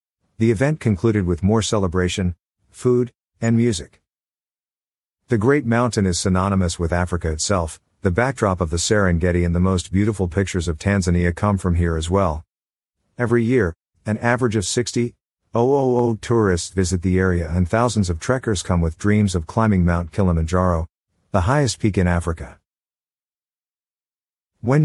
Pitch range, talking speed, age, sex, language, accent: 90-115 Hz, 145 wpm, 50-69, male, English, American